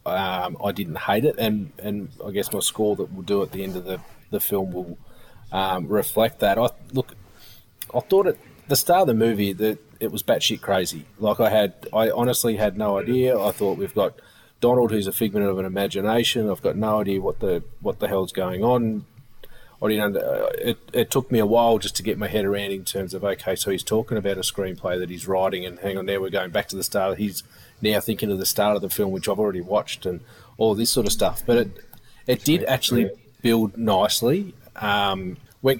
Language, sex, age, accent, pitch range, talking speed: English, male, 30-49, Australian, 100-115 Hz, 225 wpm